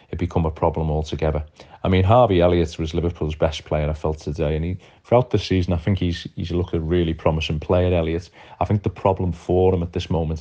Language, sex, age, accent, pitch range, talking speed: English, male, 30-49, British, 80-90 Hz, 225 wpm